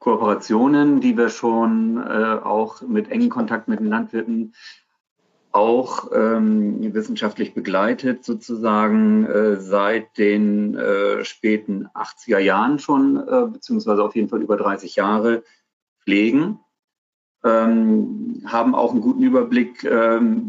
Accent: German